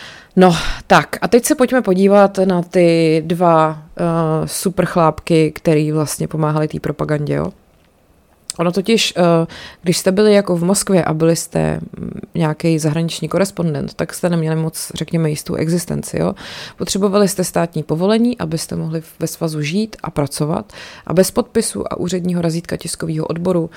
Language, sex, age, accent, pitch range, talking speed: Czech, female, 20-39, native, 160-190 Hz, 150 wpm